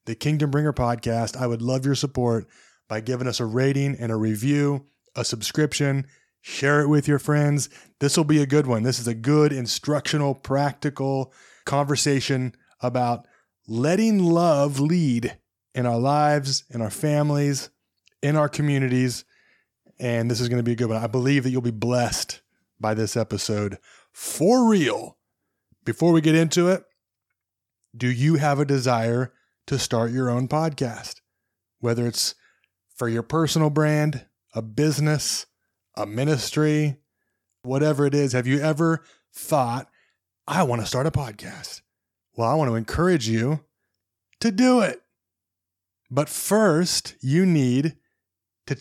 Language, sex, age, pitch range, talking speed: English, male, 20-39, 120-150 Hz, 150 wpm